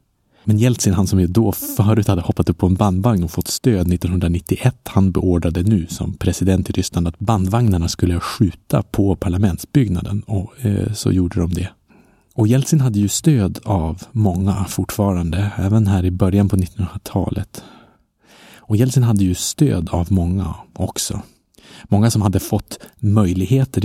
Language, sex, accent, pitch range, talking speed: Swedish, male, Norwegian, 90-110 Hz, 160 wpm